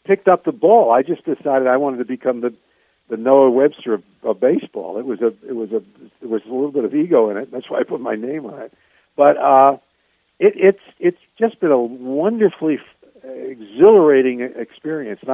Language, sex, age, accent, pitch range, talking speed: English, male, 60-79, American, 110-135 Hz, 205 wpm